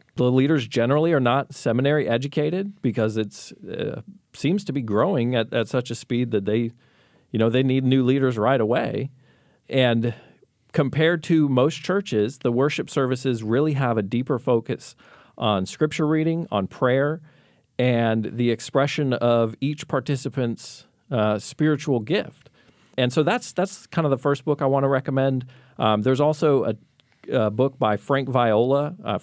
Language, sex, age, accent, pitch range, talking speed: English, male, 40-59, American, 110-145 Hz, 165 wpm